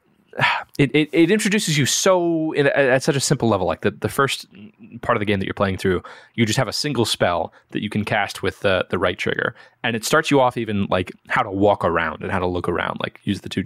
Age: 20-39